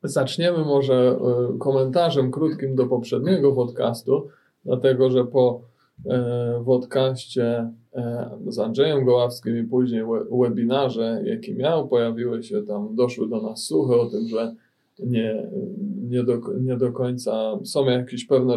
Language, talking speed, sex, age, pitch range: Polish, 135 wpm, male, 20-39, 120-130 Hz